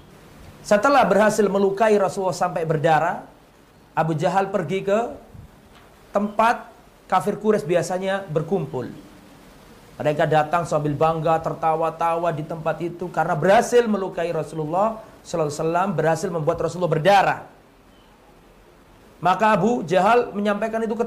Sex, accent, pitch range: male, native, 160-205 Hz